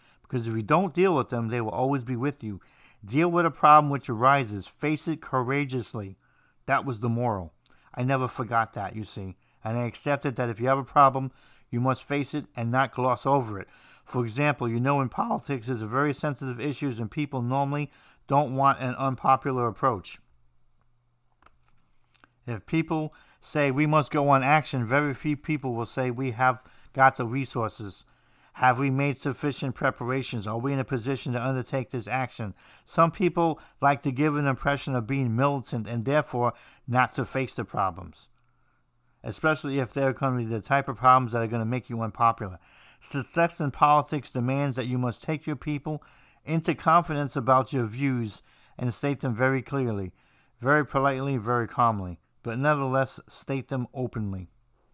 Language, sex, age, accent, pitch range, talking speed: English, male, 50-69, American, 120-140 Hz, 180 wpm